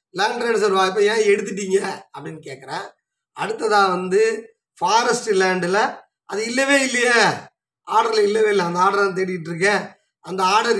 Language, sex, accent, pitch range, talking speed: Tamil, male, native, 195-280 Hz, 140 wpm